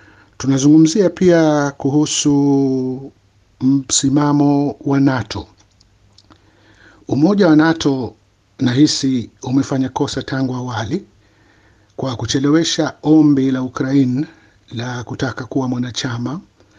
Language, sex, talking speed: Swahili, male, 80 wpm